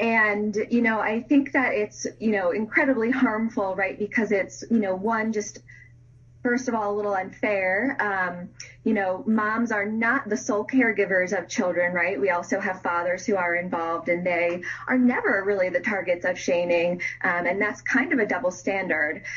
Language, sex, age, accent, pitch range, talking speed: English, female, 20-39, American, 180-225 Hz, 185 wpm